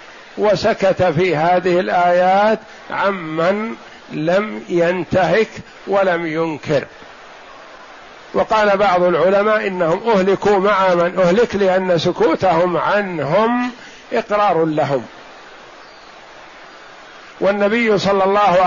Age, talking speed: 50-69, 80 wpm